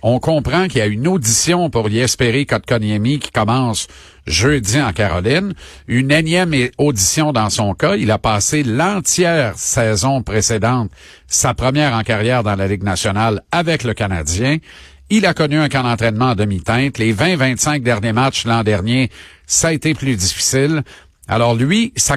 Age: 50-69